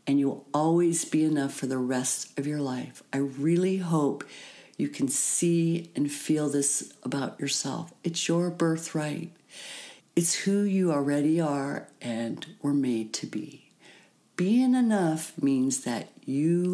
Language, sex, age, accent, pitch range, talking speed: English, female, 50-69, American, 135-175 Hz, 145 wpm